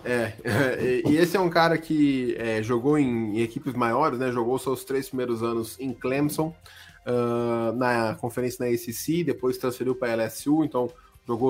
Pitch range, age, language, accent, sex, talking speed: 115-135 Hz, 20-39, Portuguese, Brazilian, male, 170 wpm